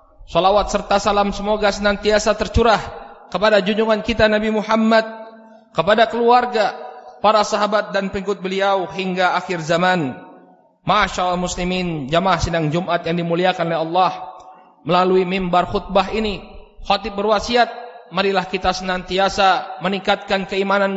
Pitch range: 180-205 Hz